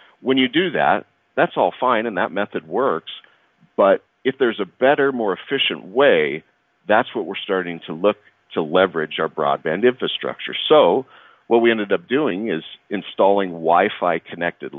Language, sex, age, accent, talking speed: English, male, 40-59, American, 160 wpm